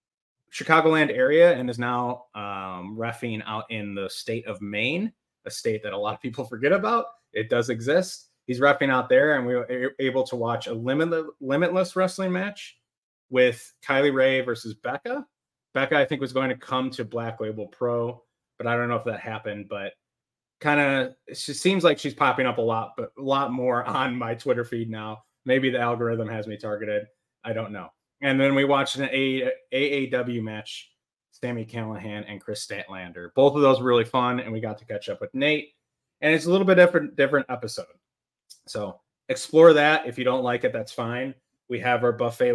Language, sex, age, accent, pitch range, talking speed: English, male, 30-49, American, 115-150 Hz, 200 wpm